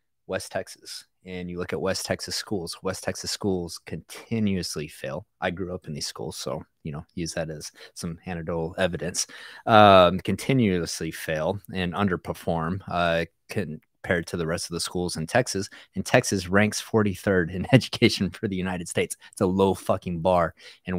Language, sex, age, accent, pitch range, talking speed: English, male, 30-49, American, 85-95 Hz, 170 wpm